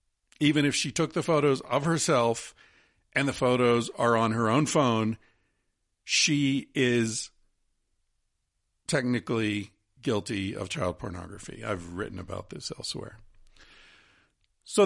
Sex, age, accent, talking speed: male, 50-69, American, 115 wpm